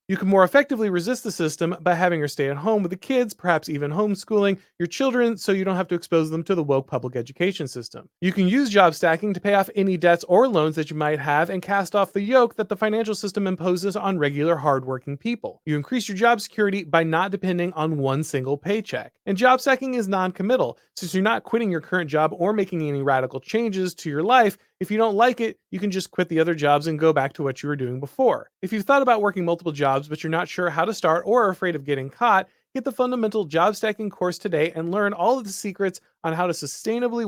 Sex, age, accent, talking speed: male, 30-49, American, 250 wpm